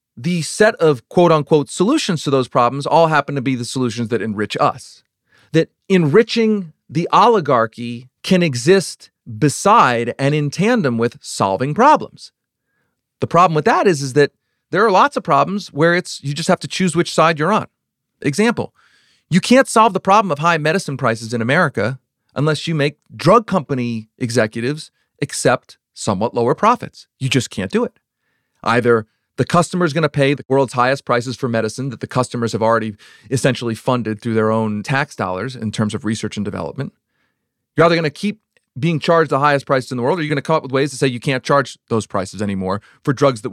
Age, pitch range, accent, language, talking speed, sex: 40-59, 120-175 Hz, American, English, 195 wpm, male